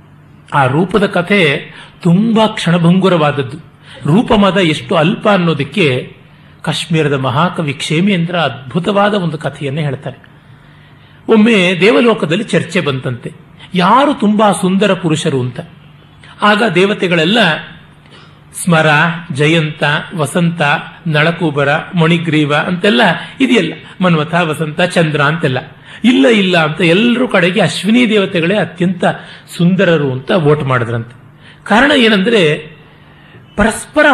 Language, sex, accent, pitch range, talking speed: Kannada, male, native, 150-210 Hz, 95 wpm